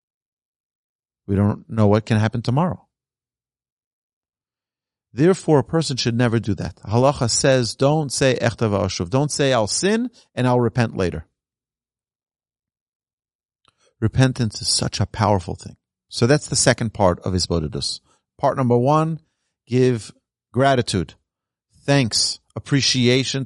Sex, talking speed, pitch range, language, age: male, 120 wpm, 105-140 Hz, English, 40-59